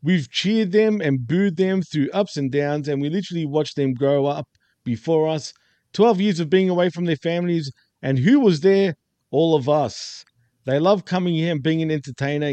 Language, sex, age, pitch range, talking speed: English, male, 50-69, 140-180 Hz, 200 wpm